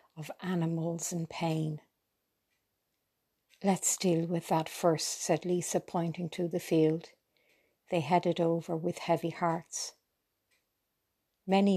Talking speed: 110 wpm